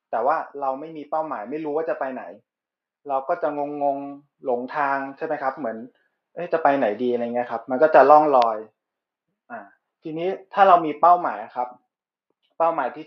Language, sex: Thai, male